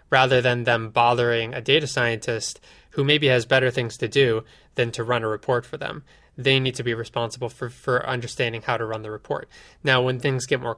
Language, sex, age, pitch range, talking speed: English, male, 20-39, 115-135 Hz, 215 wpm